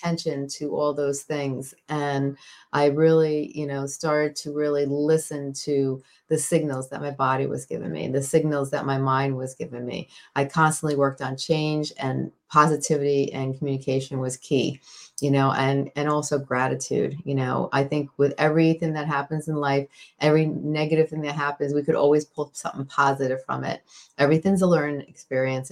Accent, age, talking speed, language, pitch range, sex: American, 40-59, 175 wpm, English, 135-155 Hz, female